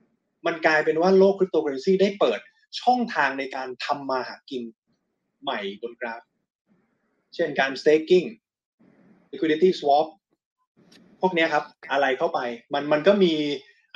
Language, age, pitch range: Thai, 20-39, 135-185 Hz